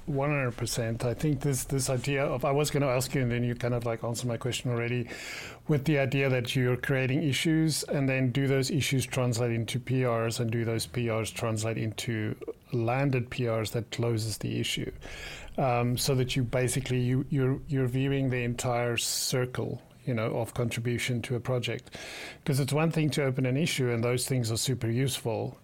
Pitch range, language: 120-135 Hz, English